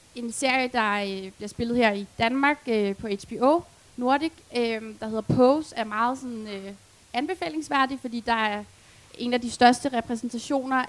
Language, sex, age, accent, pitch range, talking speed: Danish, female, 20-39, native, 220-260 Hz, 160 wpm